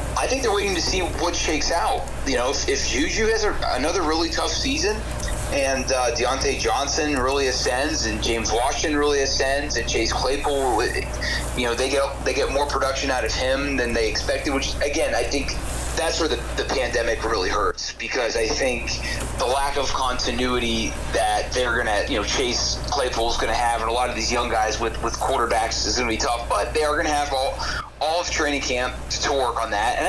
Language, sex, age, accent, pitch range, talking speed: English, male, 30-49, American, 110-140 Hz, 215 wpm